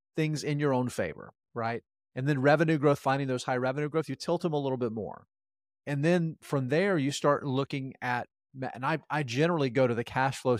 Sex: male